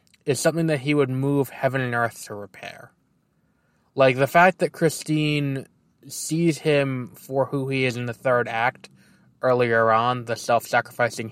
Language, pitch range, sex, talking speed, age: English, 115-140 Hz, male, 160 wpm, 20-39